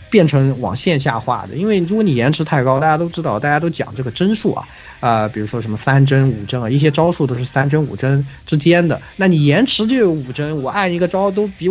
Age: 20-39